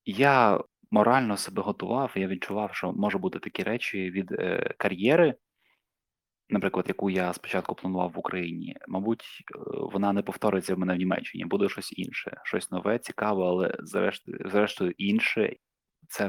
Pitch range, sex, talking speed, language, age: 95-115 Hz, male, 145 wpm, Ukrainian, 20-39